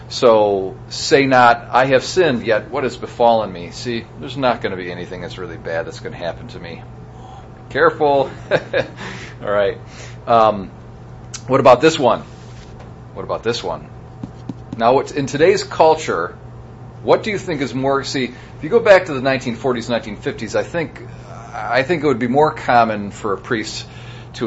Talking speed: 175 wpm